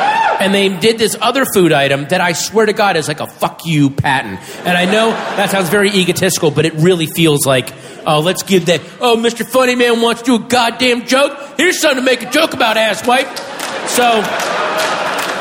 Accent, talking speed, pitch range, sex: American, 215 wpm, 190-260 Hz, male